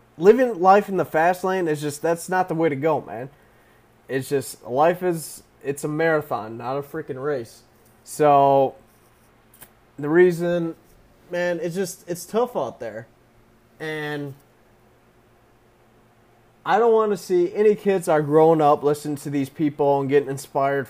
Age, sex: 20-39, male